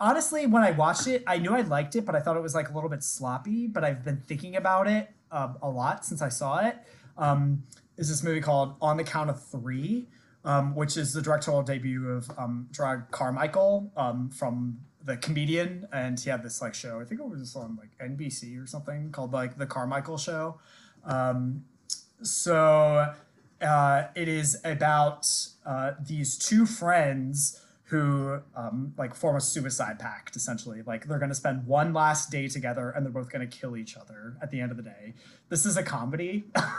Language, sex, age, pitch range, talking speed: English, male, 20-39, 130-175 Hz, 195 wpm